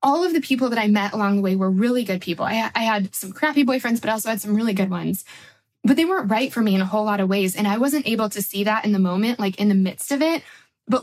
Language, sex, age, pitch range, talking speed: English, female, 20-39, 195-255 Hz, 305 wpm